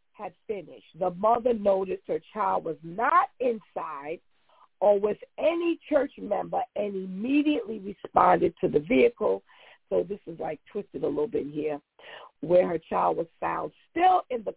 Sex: female